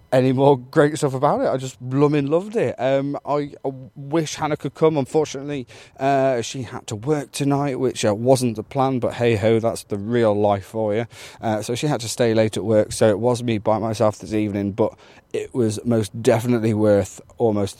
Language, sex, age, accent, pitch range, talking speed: English, male, 30-49, British, 105-135 Hz, 210 wpm